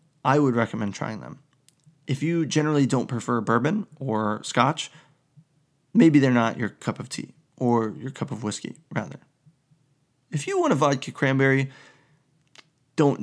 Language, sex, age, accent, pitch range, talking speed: English, male, 20-39, American, 120-150 Hz, 150 wpm